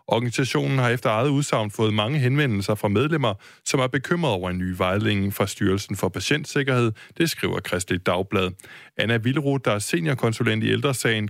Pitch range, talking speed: 100-130 Hz, 170 wpm